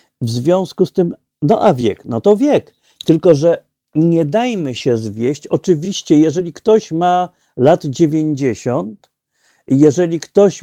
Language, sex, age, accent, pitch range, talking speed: Polish, male, 50-69, native, 135-180 Hz, 135 wpm